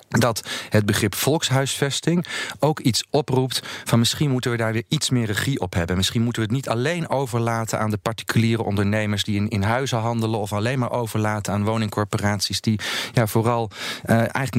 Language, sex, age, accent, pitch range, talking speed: Dutch, male, 40-59, Dutch, 100-125 Hz, 180 wpm